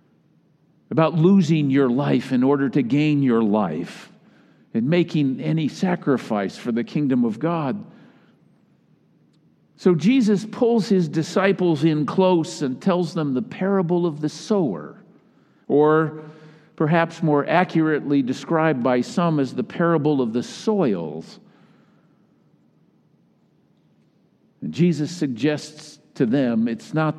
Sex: male